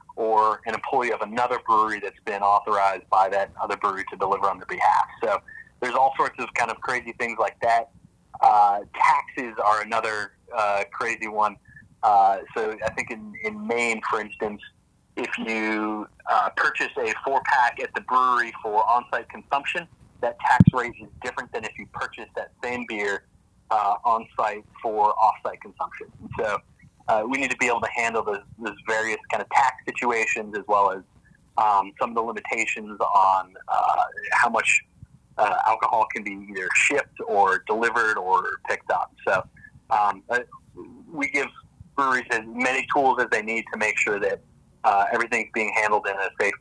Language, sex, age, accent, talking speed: English, male, 30-49, American, 175 wpm